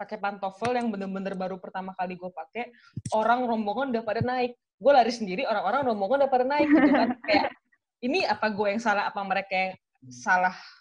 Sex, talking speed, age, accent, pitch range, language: female, 190 wpm, 20-39, native, 185-235 Hz, Indonesian